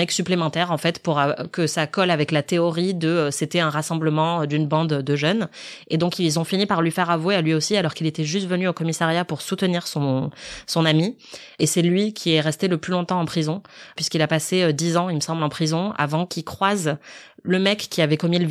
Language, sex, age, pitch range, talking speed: French, female, 20-39, 155-180 Hz, 235 wpm